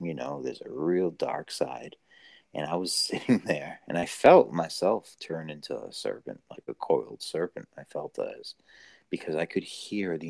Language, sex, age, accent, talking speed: English, male, 30-49, American, 185 wpm